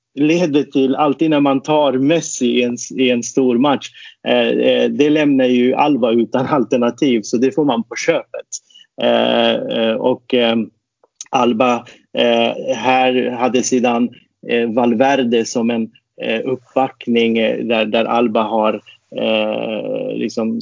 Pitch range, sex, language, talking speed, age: 120-145 Hz, male, Swedish, 130 wpm, 30-49